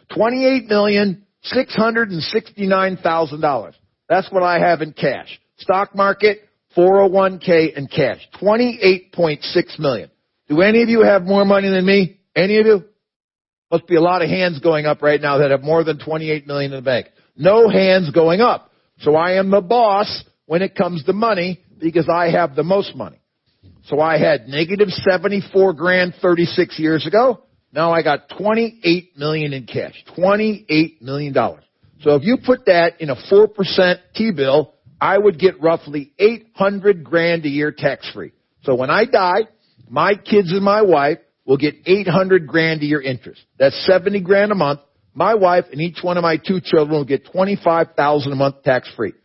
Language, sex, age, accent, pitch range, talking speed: English, male, 50-69, American, 155-200 Hz, 195 wpm